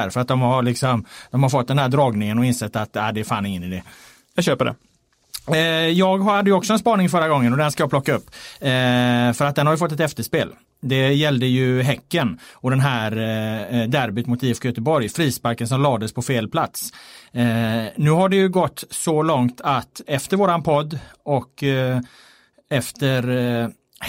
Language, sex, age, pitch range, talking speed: Swedish, male, 30-49, 120-150 Hz, 200 wpm